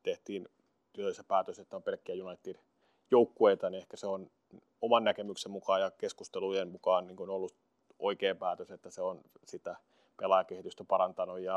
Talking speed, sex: 140 wpm, male